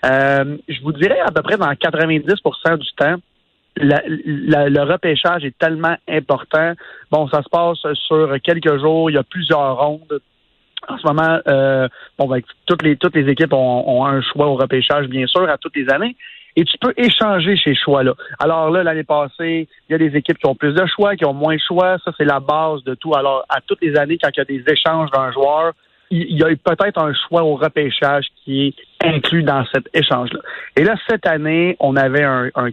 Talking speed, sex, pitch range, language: 215 wpm, male, 140-165 Hz, French